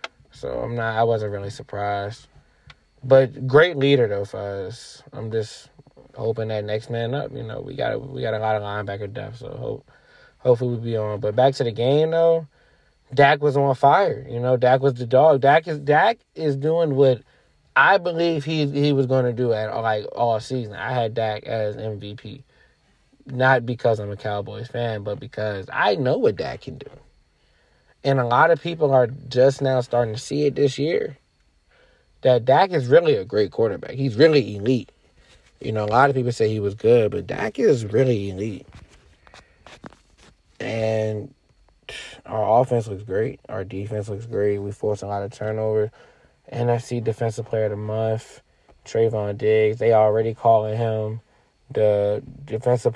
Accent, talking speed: American, 180 wpm